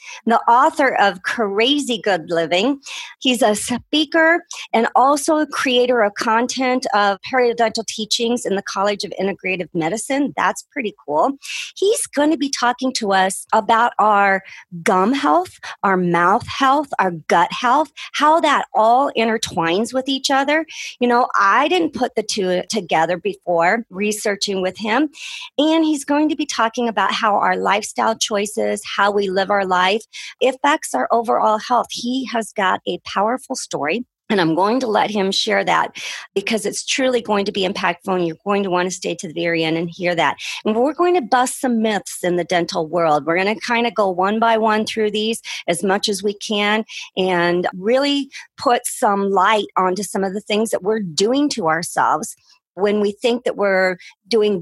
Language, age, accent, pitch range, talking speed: English, 40-59, American, 190-260 Hz, 180 wpm